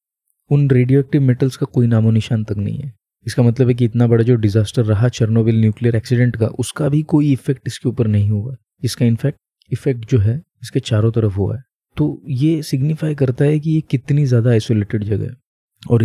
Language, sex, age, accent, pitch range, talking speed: Hindi, male, 20-39, native, 110-135 Hz, 205 wpm